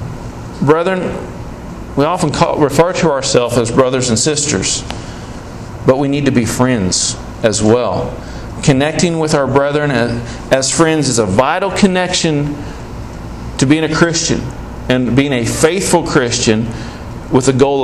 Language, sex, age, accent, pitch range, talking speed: English, male, 40-59, American, 120-155 Hz, 140 wpm